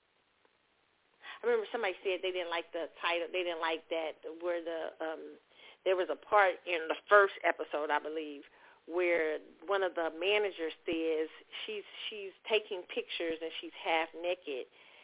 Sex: female